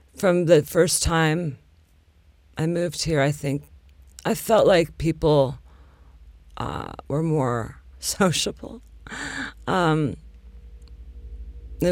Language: English